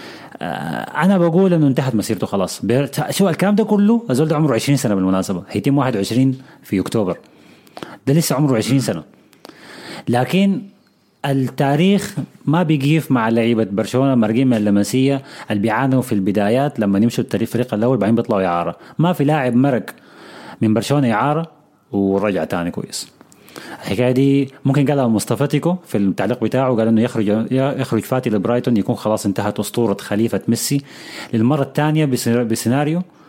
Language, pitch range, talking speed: Arabic, 110-145 Hz, 145 wpm